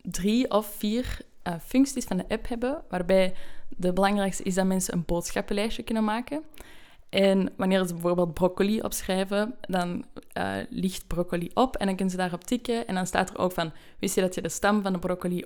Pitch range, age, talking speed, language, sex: 180-200 Hz, 10-29, 200 wpm, Dutch, female